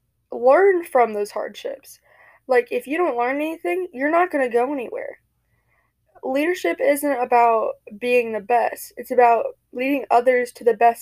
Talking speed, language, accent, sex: 160 wpm, English, American, female